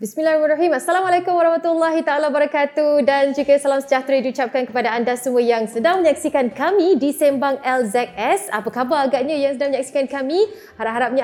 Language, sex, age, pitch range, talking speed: Malay, female, 20-39, 240-285 Hz, 150 wpm